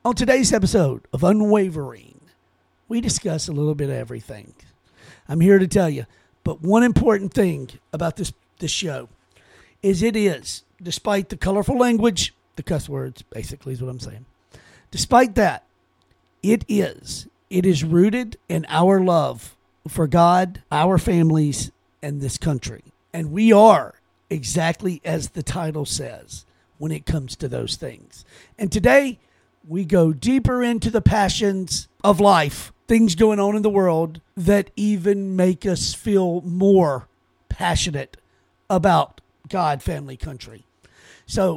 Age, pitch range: 50-69, 150-210 Hz